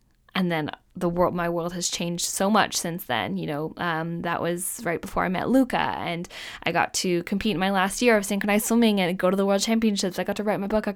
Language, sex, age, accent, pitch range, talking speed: English, female, 10-29, American, 180-225 Hz, 255 wpm